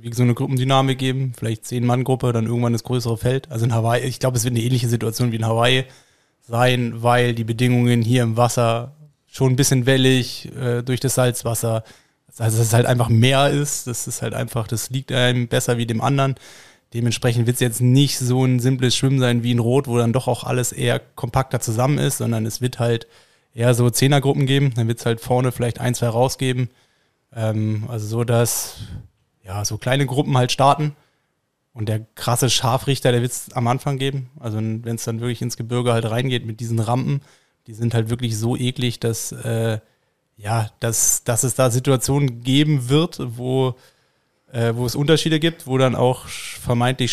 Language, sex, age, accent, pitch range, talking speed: German, male, 20-39, German, 115-135 Hz, 195 wpm